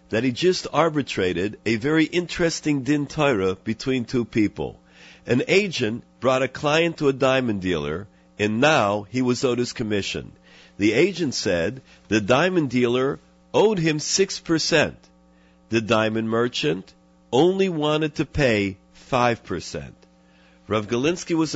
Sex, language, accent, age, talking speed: male, English, American, 50-69, 135 wpm